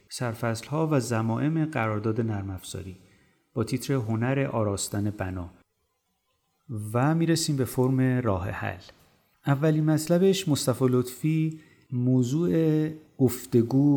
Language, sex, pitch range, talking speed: Persian, male, 110-140 Hz, 90 wpm